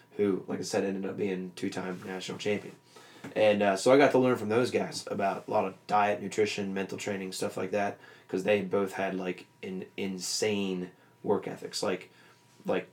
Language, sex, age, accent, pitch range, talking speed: English, male, 20-39, American, 95-105 Hz, 195 wpm